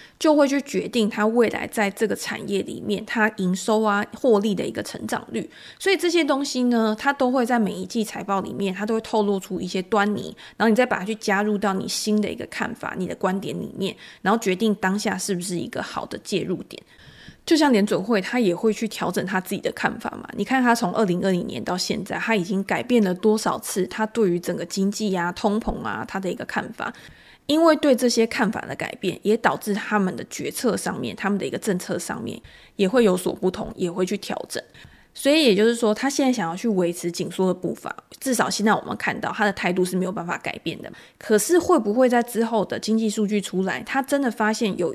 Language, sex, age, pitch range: Chinese, female, 20-39, 195-235 Hz